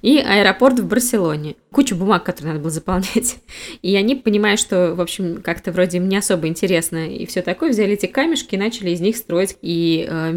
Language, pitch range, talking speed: Russian, 170-225 Hz, 205 wpm